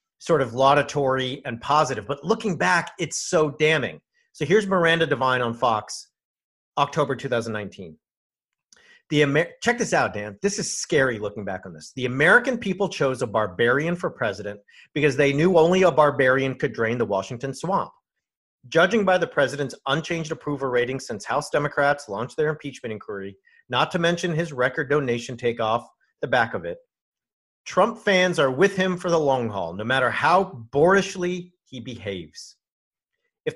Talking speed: 165 wpm